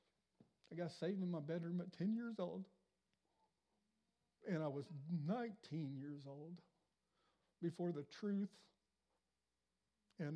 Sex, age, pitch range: male, 60-79, 130-160 Hz